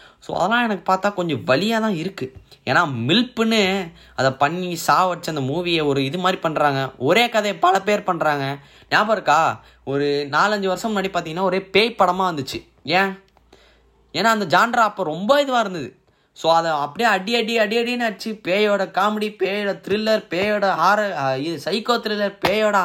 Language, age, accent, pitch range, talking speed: Tamil, 20-39, native, 135-200 Hz, 160 wpm